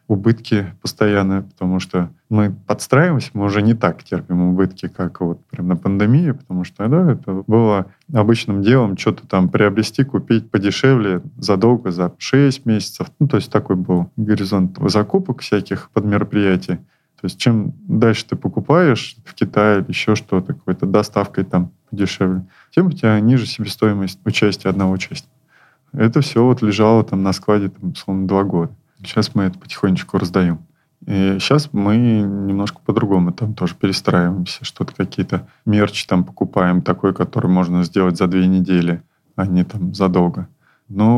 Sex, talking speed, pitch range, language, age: male, 155 wpm, 95-115 Hz, Russian, 20-39